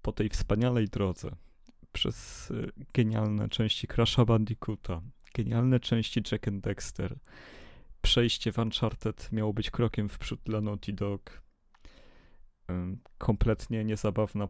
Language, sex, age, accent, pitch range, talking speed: Polish, male, 30-49, native, 100-115 Hz, 110 wpm